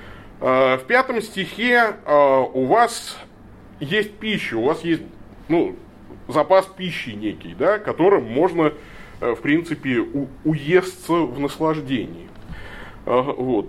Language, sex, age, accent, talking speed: Russian, male, 30-49, native, 105 wpm